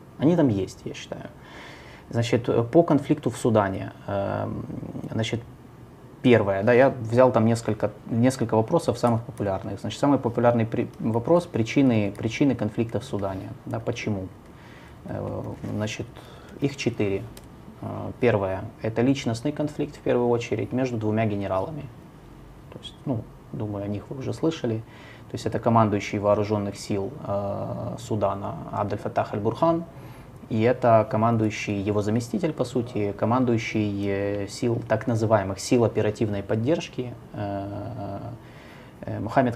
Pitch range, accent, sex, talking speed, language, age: 105-125 Hz, native, male, 120 wpm, Russian, 20-39